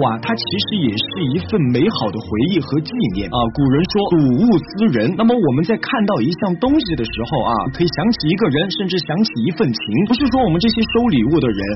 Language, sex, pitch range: Chinese, male, 130-210 Hz